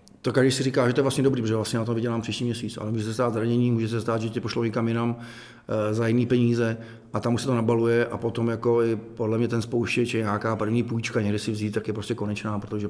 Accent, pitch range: native, 110-125 Hz